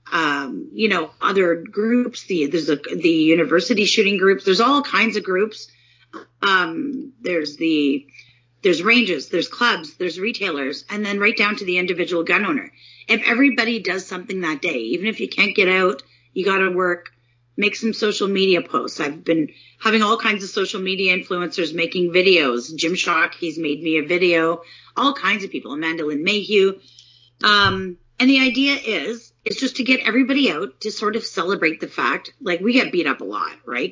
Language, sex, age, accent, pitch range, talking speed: English, female, 30-49, American, 160-220 Hz, 190 wpm